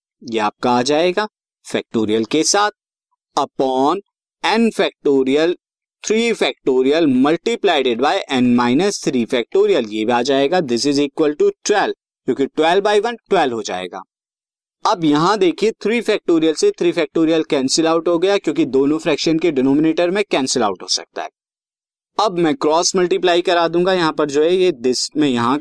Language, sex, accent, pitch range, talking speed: Hindi, male, native, 140-205 Hz, 165 wpm